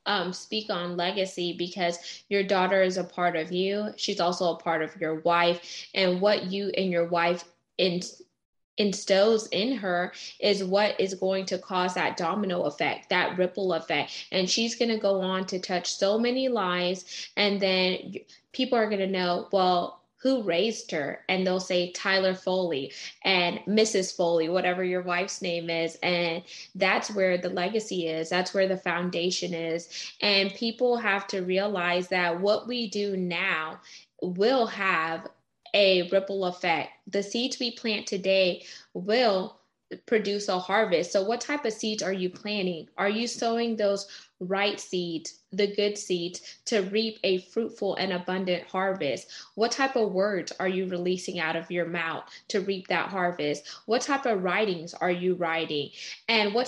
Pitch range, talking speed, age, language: 180-205 Hz, 165 wpm, 10-29, English